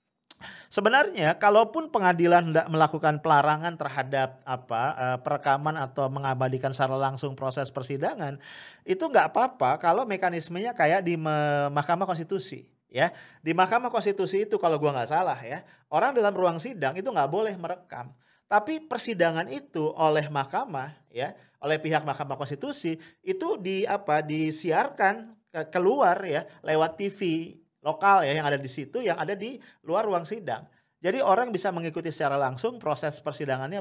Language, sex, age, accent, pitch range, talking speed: English, male, 40-59, Indonesian, 140-195 Hz, 145 wpm